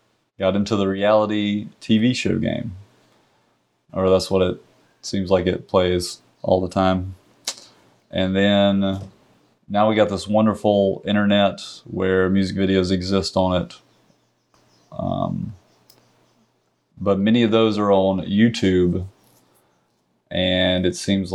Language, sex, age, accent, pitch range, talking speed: English, male, 30-49, American, 90-100 Hz, 120 wpm